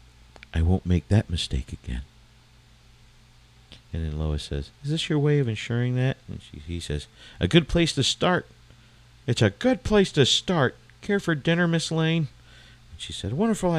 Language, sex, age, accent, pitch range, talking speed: English, male, 40-59, American, 95-130 Hz, 175 wpm